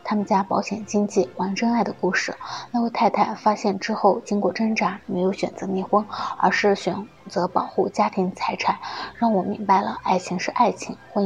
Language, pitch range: Chinese, 190-225 Hz